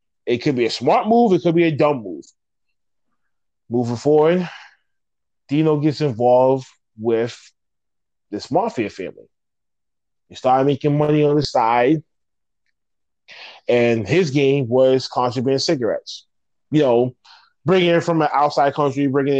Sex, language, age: male, English, 20-39